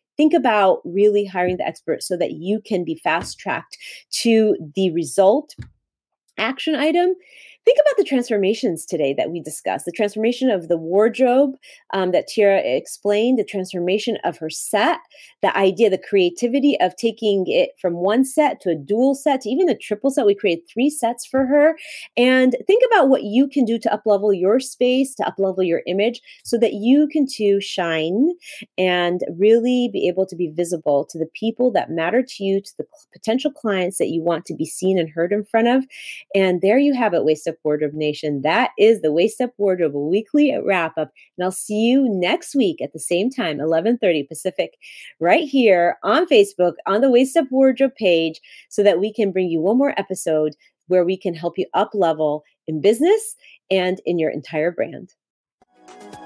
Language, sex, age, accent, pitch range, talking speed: English, female, 30-49, American, 180-260 Hz, 190 wpm